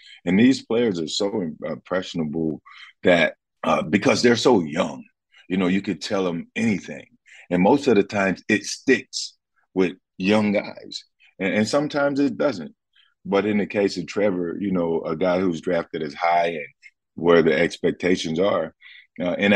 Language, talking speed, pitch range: English, 170 wpm, 85-105 Hz